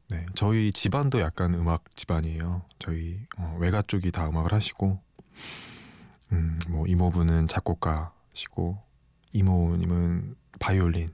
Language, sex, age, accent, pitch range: Korean, male, 20-39, native, 85-100 Hz